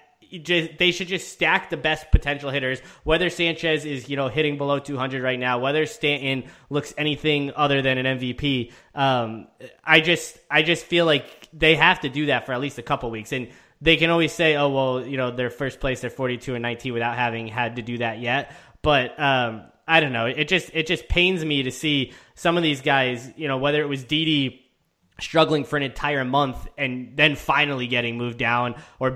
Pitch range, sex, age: 130-160 Hz, male, 20-39